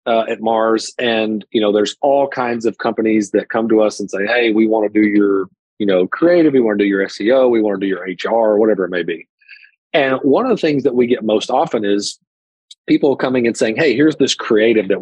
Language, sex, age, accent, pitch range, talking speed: English, male, 40-59, American, 105-140 Hz, 250 wpm